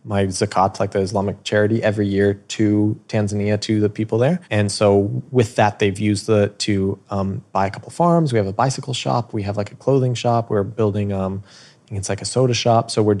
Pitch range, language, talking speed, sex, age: 100-115 Hz, English, 225 wpm, male, 20-39